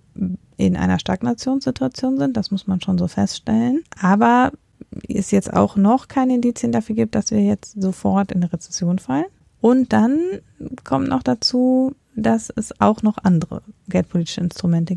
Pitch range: 175-205 Hz